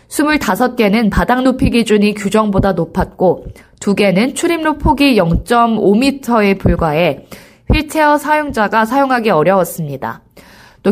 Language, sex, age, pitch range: Korean, female, 20-39, 190-250 Hz